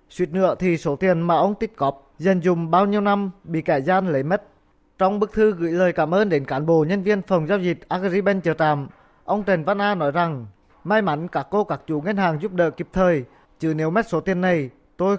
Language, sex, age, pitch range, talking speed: Vietnamese, male, 20-39, 155-195 Hz, 245 wpm